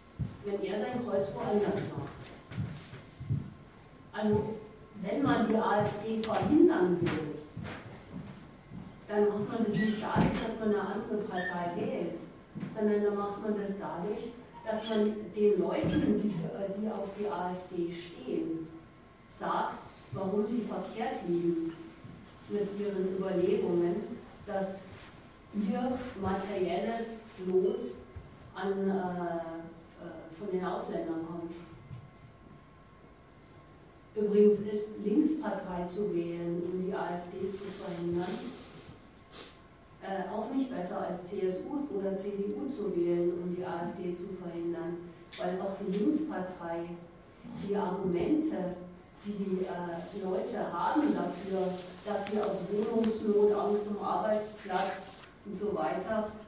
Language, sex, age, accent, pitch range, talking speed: German, female, 40-59, German, 175-210 Hz, 110 wpm